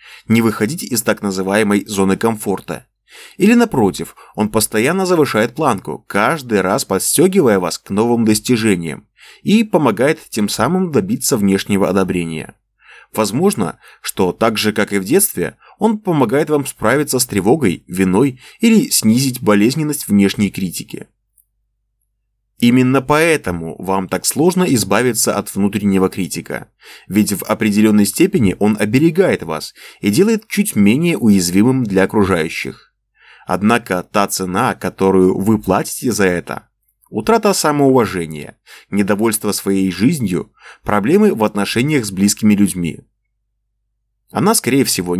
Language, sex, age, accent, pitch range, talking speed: Russian, male, 20-39, native, 100-130 Hz, 120 wpm